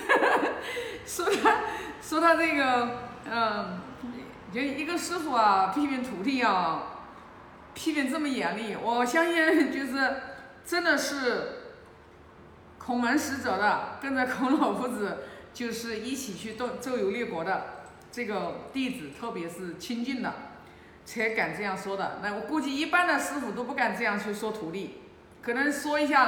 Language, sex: Chinese, female